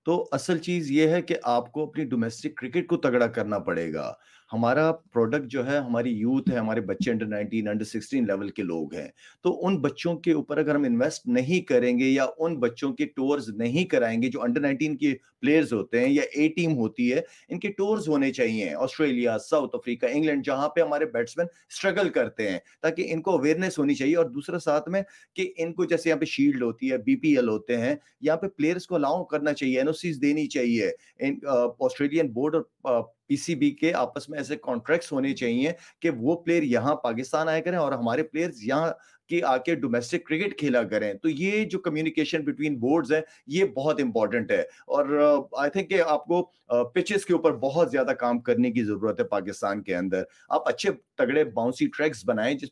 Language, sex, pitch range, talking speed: Urdu, male, 135-180 Hz, 155 wpm